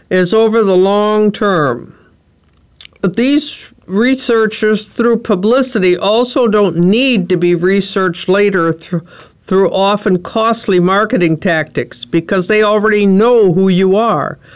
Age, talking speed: 60-79, 125 wpm